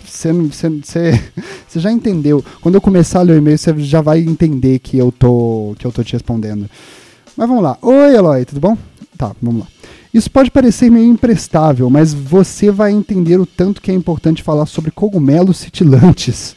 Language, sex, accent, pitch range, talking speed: Portuguese, male, Brazilian, 130-195 Hz, 185 wpm